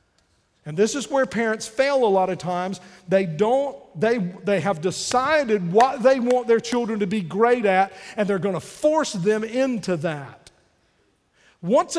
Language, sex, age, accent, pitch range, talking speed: English, male, 50-69, American, 185-250 Hz, 170 wpm